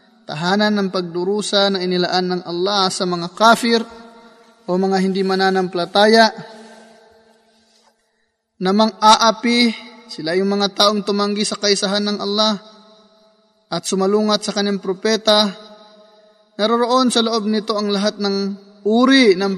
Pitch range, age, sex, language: 190-220 Hz, 20-39, male, Filipino